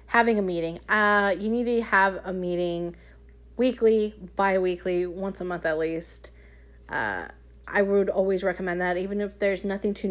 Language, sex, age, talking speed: English, female, 30-49, 165 wpm